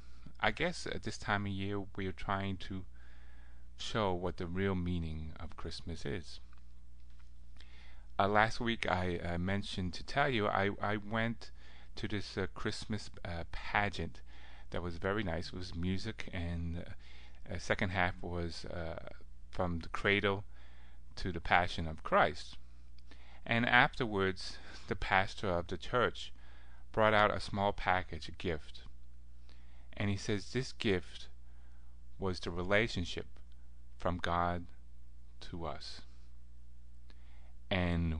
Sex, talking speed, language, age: male, 135 wpm, English, 30-49